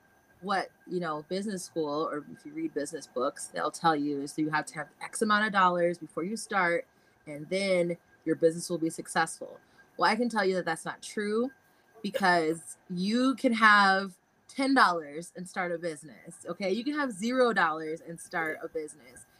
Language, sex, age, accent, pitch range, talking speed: English, female, 20-39, American, 170-225 Hz, 185 wpm